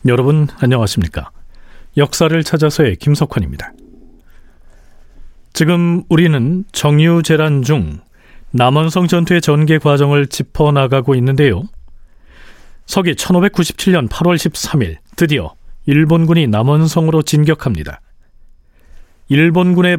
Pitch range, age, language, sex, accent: 110-165 Hz, 40-59, Korean, male, native